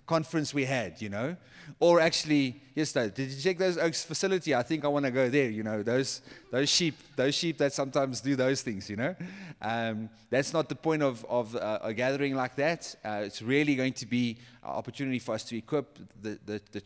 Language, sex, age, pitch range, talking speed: English, male, 30-49, 115-140 Hz, 220 wpm